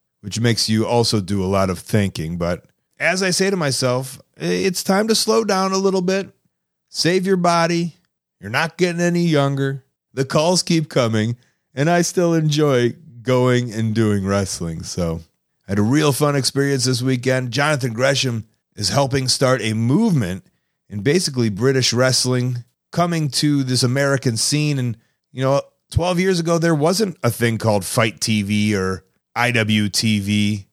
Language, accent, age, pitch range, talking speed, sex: English, American, 30-49, 110-150 Hz, 160 wpm, male